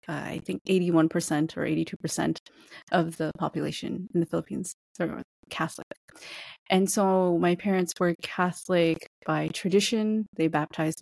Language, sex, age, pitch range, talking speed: English, female, 20-39, 160-185 Hz, 130 wpm